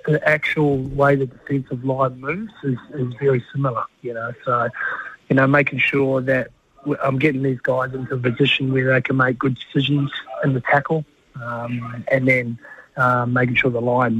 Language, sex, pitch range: English, male, 125-140 Hz